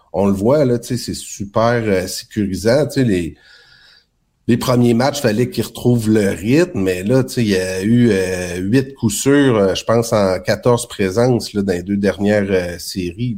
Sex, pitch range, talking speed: male, 95-120 Hz, 180 wpm